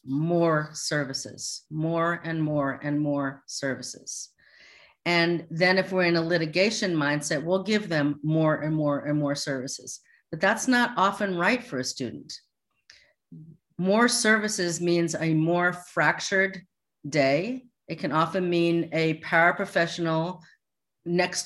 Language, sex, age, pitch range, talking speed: English, female, 40-59, 160-190 Hz, 130 wpm